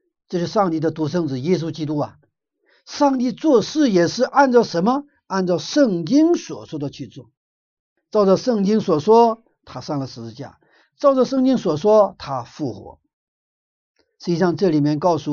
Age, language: 60-79, Chinese